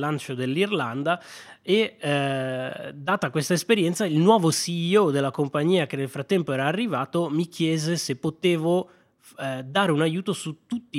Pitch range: 125-165 Hz